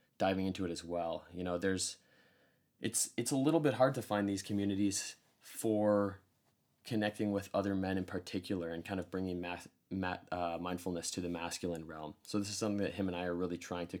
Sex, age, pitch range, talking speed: male, 20-39, 85-100 Hz, 210 wpm